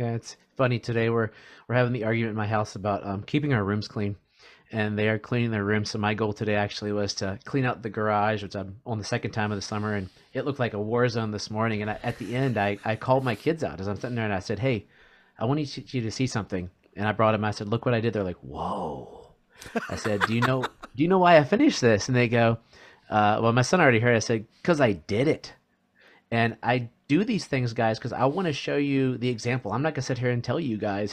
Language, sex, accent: English, male, American